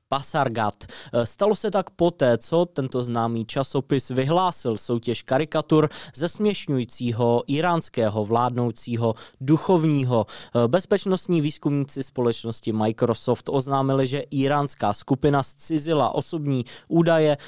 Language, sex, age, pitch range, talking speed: Czech, male, 20-39, 120-155 Hz, 95 wpm